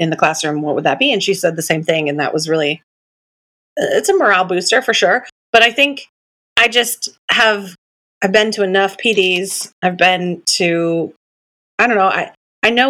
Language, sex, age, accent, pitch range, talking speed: English, female, 30-49, American, 165-200 Hz, 200 wpm